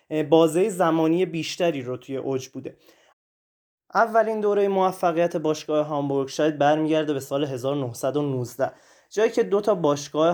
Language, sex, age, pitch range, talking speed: Persian, male, 20-39, 140-175 Hz, 120 wpm